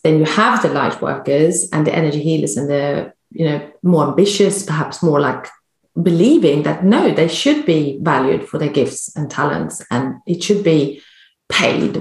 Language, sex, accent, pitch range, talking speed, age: English, female, British, 155-220 Hz, 180 wpm, 30-49